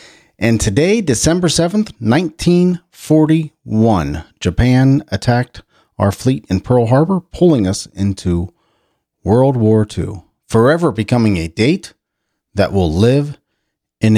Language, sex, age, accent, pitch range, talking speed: English, male, 40-59, American, 95-125 Hz, 110 wpm